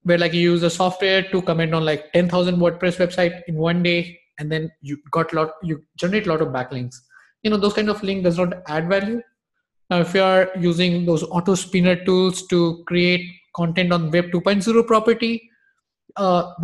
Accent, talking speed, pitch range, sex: Indian, 195 wpm, 160-200 Hz, male